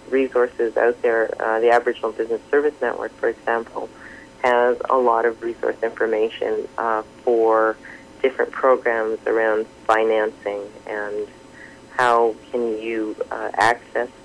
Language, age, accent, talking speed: English, 40-59, American, 120 wpm